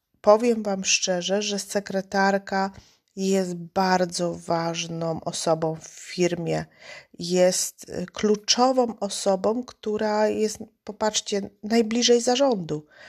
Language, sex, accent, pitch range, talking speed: Polish, female, native, 175-200 Hz, 85 wpm